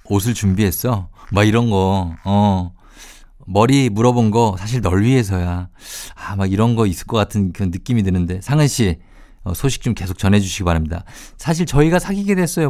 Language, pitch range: Korean, 100-130 Hz